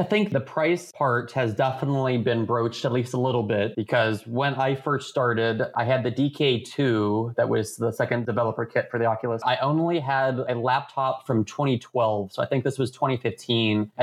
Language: English